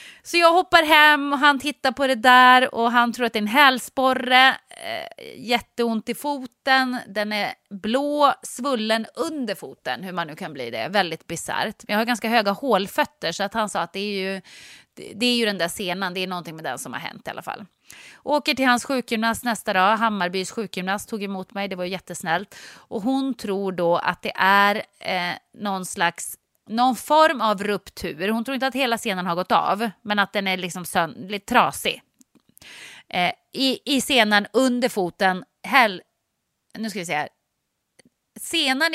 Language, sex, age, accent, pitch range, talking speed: English, female, 30-49, Swedish, 190-260 Hz, 190 wpm